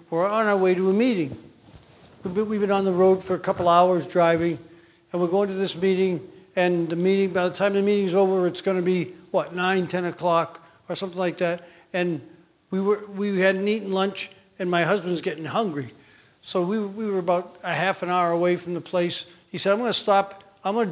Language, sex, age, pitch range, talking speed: English, male, 50-69, 175-205 Hz, 215 wpm